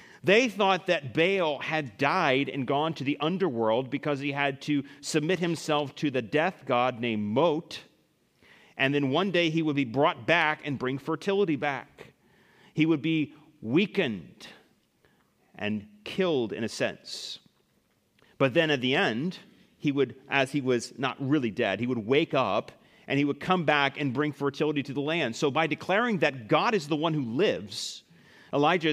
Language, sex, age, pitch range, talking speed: English, male, 40-59, 140-175 Hz, 175 wpm